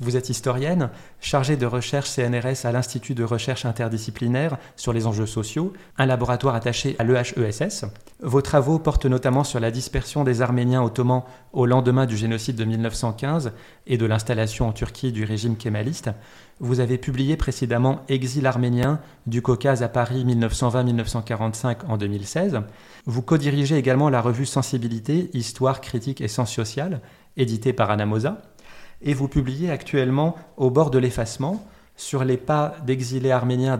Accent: French